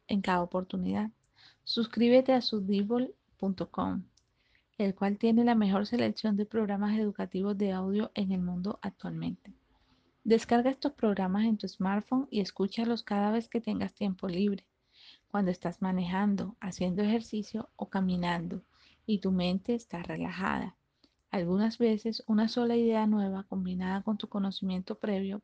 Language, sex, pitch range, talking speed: Spanish, female, 190-220 Hz, 135 wpm